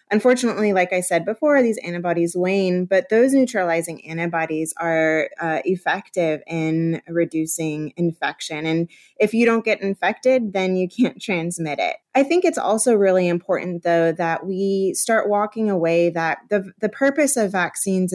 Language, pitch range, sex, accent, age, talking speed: English, 165-205 Hz, female, American, 20-39, 155 wpm